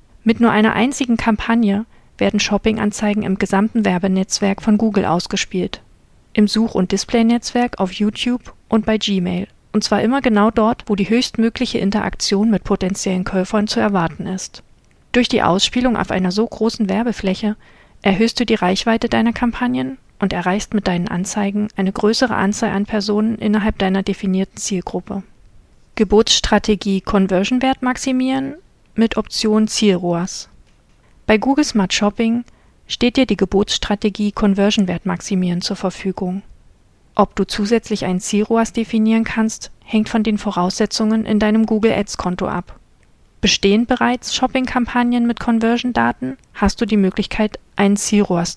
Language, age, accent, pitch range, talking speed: German, 40-59, German, 195-225 Hz, 140 wpm